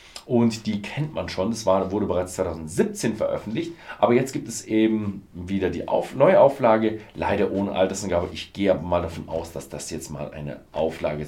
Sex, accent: male, German